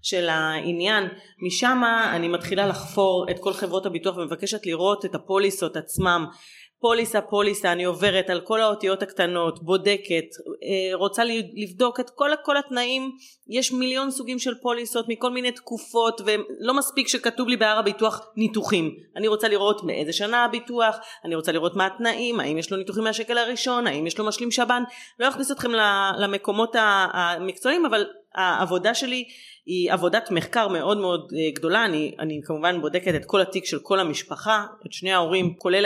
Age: 30-49